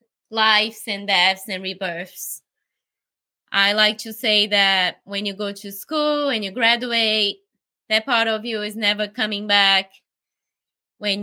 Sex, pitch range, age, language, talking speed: female, 210-245 Hz, 20-39, English, 145 wpm